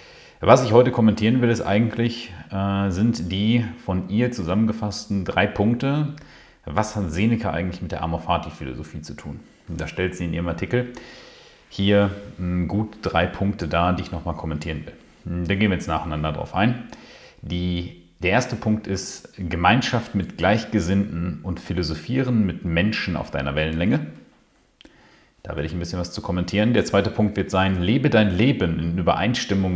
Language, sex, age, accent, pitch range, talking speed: German, male, 40-59, German, 80-105 Hz, 160 wpm